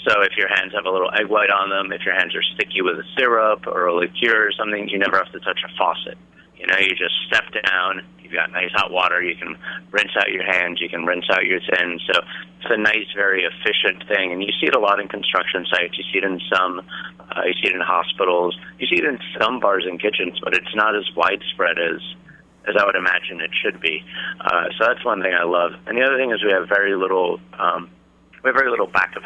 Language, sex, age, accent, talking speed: English, male, 30-49, American, 255 wpm